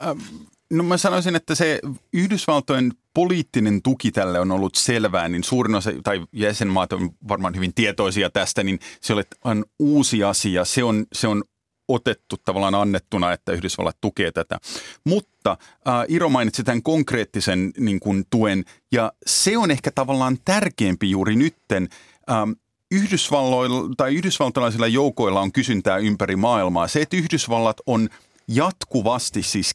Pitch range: 100-140 Hz